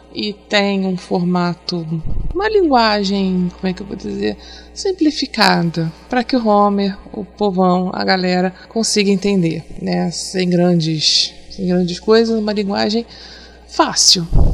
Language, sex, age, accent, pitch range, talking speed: Portuguese, female, 20-39, Brazilian, 180-245 Hz, 130 wpm